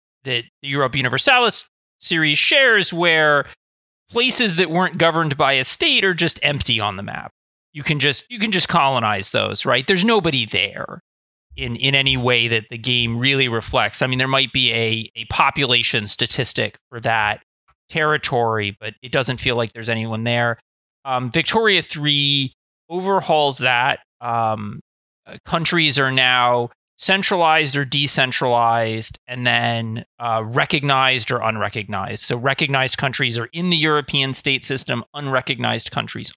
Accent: American